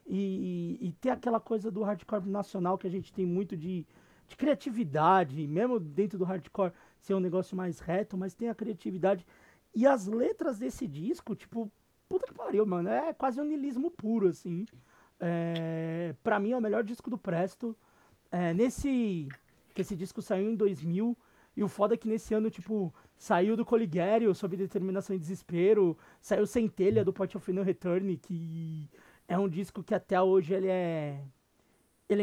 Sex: male